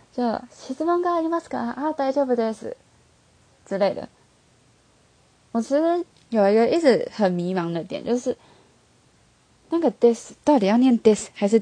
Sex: female